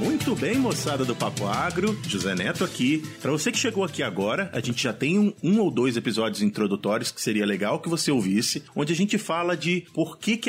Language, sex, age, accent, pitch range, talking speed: Portuguese, male, 40-59, Brazilian, 120-170 Hz, 225 wpm